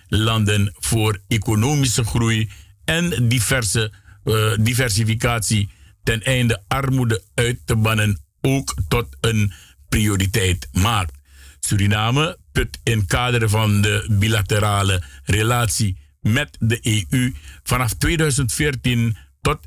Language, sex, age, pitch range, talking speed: Dutch, male, 50-69, 100-130 Hz, 100 wpm